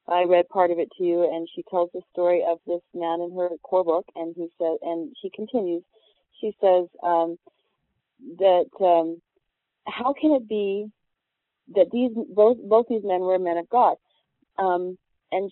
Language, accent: English, American